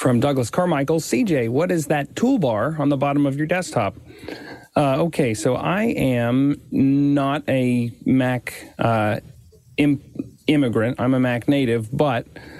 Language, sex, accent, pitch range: English, male, American, 120-145 Hz